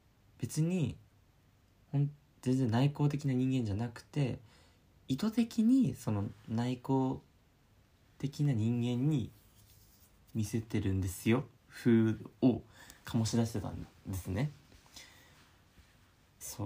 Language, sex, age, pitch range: Japanese, male, 20-39, 100-125 Hz